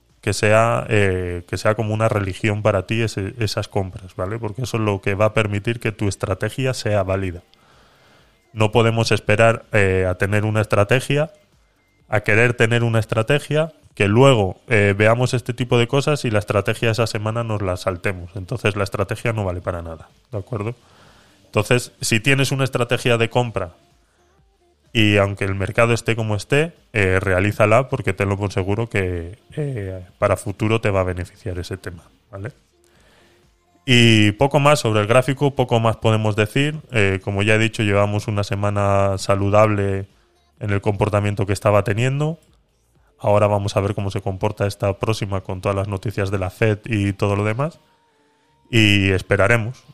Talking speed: 170 wpm